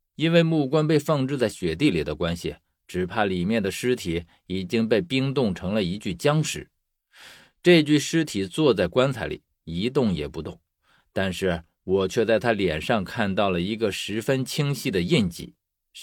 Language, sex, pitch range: Chinese, male, 100-150 Hz